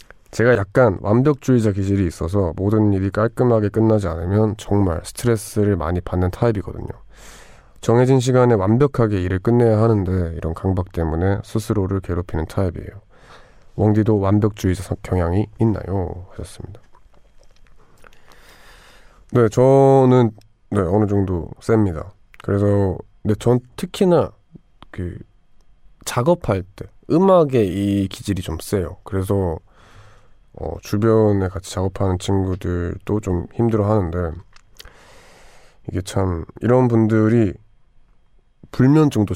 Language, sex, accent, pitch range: Korean, male, native, 90-115 Hz